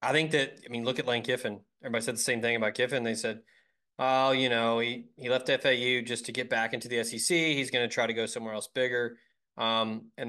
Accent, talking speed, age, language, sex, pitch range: American, 250 wpm, 20-39, English, male, 115-140 Hz